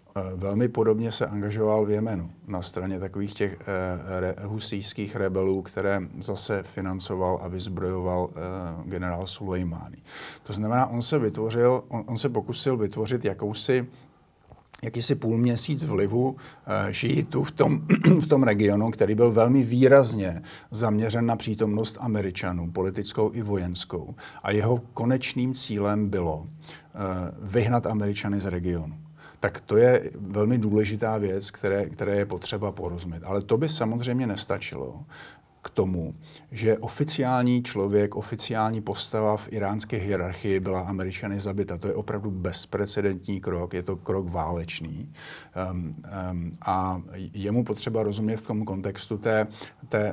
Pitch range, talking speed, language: 95-115 Hz, 135 wpm, Slovak